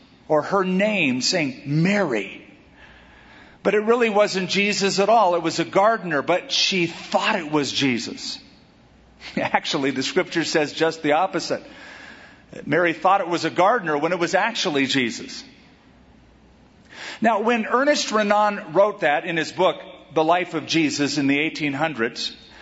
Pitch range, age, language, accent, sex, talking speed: 160-205 Hz, 50-69, English, American, male, 150 wpm